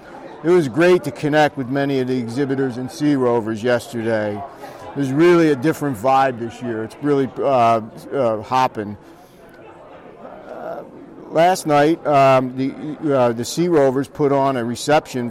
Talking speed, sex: 155 wpm, male